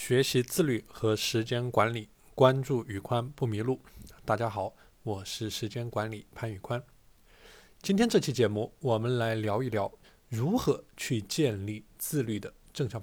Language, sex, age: Chinese, male, 20-39